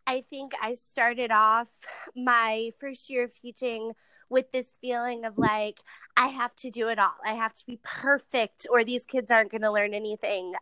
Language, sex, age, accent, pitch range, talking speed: English, female, 20-39, American, 220-260 Hz, 190 wpm